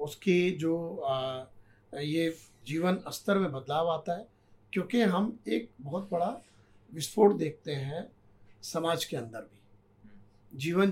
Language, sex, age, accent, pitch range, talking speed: Hindi, male, 50-69, native, 110-180 Hz, 120 wpm